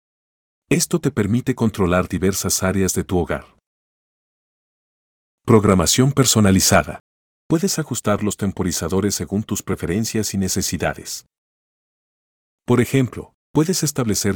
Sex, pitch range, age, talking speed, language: male, 90-110 Hz, 50-69, 100 wpm, Spanish